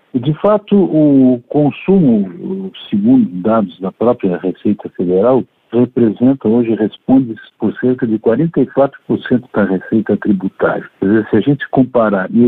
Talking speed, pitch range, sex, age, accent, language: 125 wpm, 105-145 Hz, male, 60-79, Brazilian, Portuguese